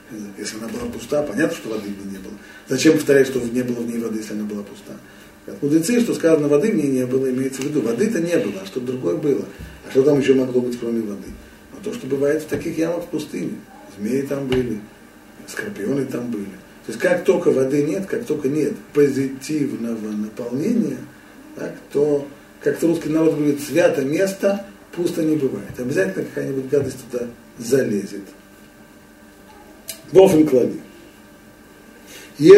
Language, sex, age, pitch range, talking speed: Russian, male, 40-59, 115-155 Hz, 170 wpm